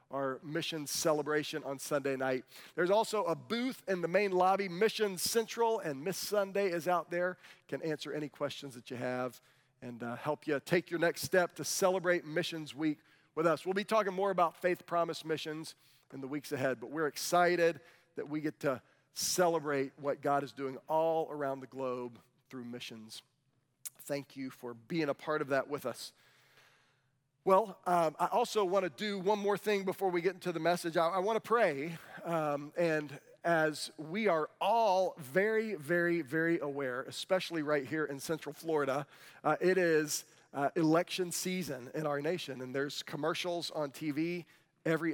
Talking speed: 180 wpm